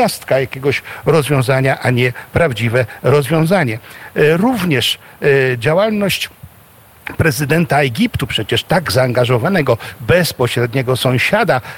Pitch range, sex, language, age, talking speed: 125-155 Hz, male, Polish, 50-69, 75 wpm